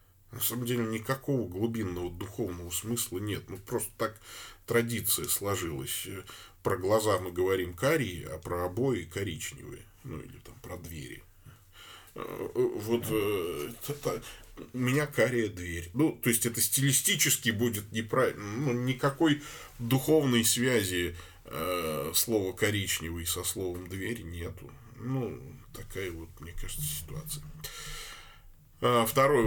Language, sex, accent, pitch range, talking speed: Russian, male, native, 95-125 Hz, 115 wpm